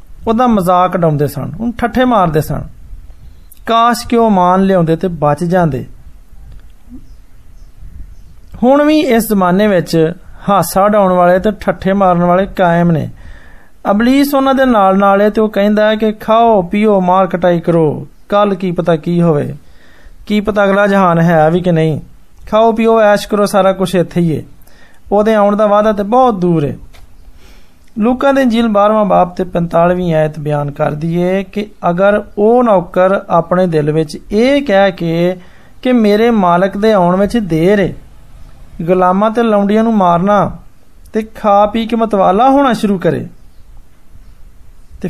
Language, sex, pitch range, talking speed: Hindi, male, 165-215 Hz, 130 wpm